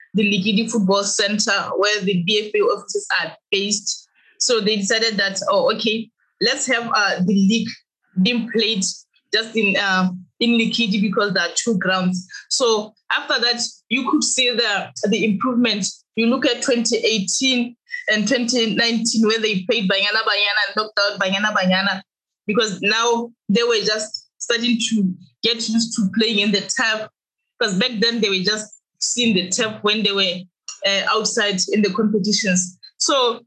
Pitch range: 200-235 Hz